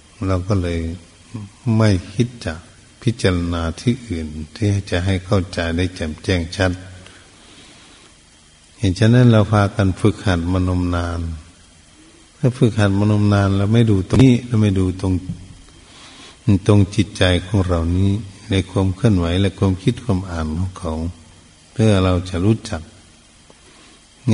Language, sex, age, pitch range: Thai, male, 60-79, 85-105 Hz